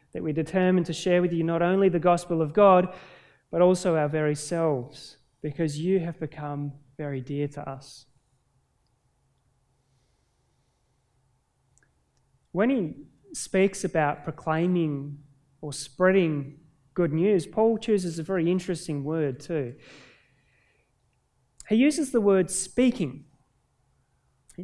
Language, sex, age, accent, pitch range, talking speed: English, male, 30-49, Australian, 145-195 Hz, 115 wpm